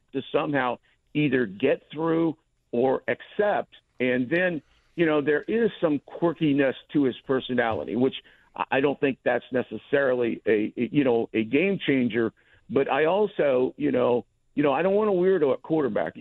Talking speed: 165 wpm